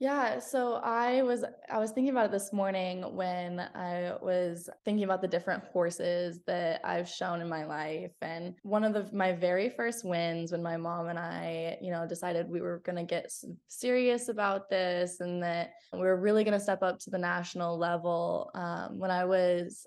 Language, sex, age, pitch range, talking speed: English, female, 20-39, 170-195 Hz, 200 wpm